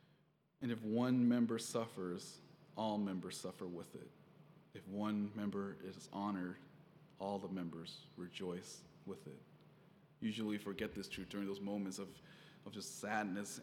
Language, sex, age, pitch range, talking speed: English, male, 20-39, 100-130 Hz, 145 wpm